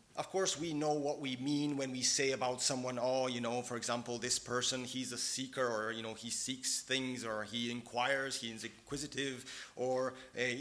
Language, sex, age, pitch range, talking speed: English, male, 30-49, 115-140 Hz, 200 wpm